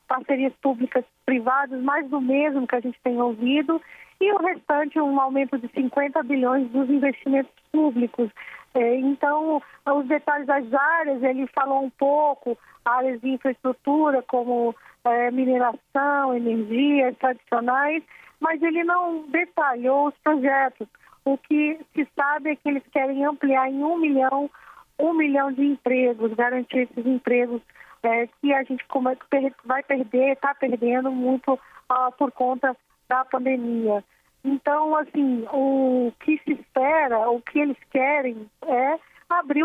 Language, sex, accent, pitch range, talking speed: Portuguese, female, Brazilian, 250-290 Hz, 130 wpm